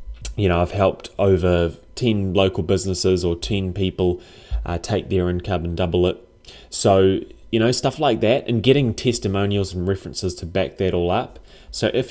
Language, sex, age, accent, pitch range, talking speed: English, male, 20-39, Australian, 85-100 Hz, 180 wpm